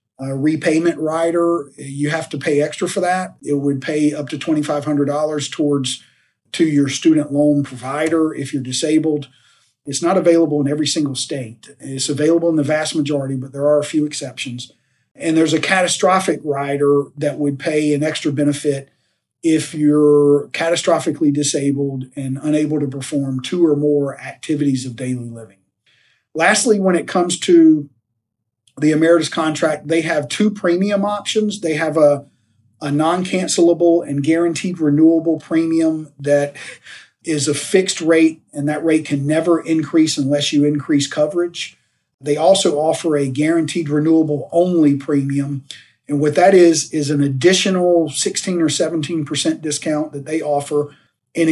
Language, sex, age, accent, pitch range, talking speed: English, male, 40-59, American, 145-165 Hz, 150 wpm